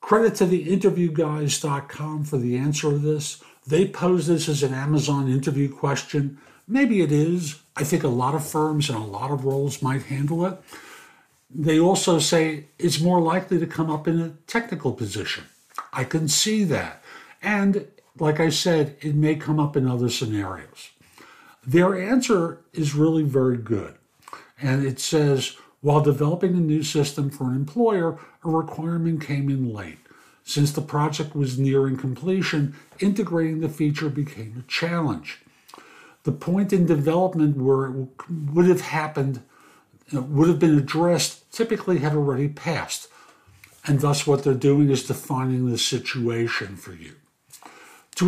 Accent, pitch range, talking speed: American, 135-165 Hz, 155 wpm